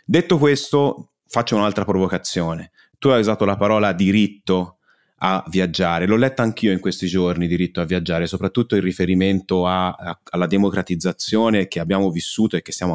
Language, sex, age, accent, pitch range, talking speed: Italian, male, 30-49, native, 95-115 Hz, 160 wpm